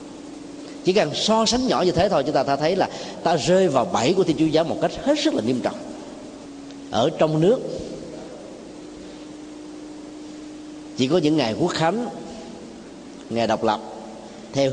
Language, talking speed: Vietnamese, 165 wpm